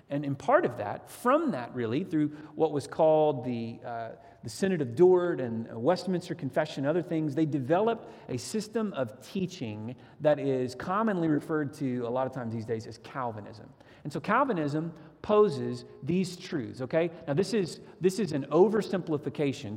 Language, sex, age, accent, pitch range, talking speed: English, male, 40-59, American, 130-180 Hz, 175 wpm